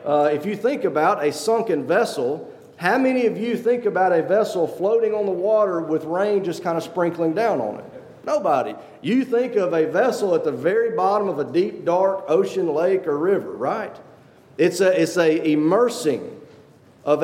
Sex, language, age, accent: male, English, 40-59, American